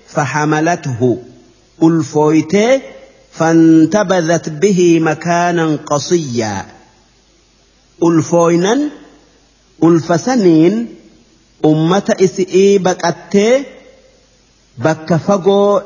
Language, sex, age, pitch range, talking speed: English, male, 50-69, 150-200 Hz, 45 wpm